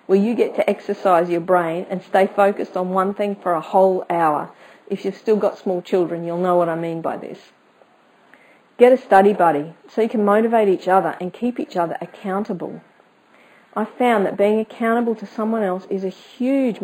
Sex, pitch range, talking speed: female, 175-225 Hz, 200 wpm